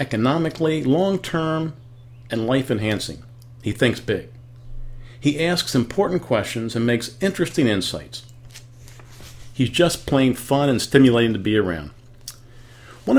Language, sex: English, male